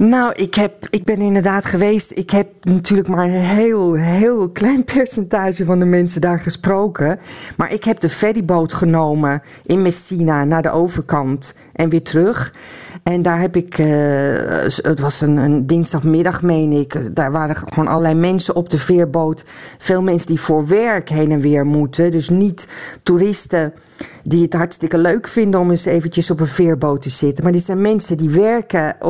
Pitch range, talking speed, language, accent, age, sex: 160-200 Hz, 175 wpm, Dutch, Dutch, 40-59, female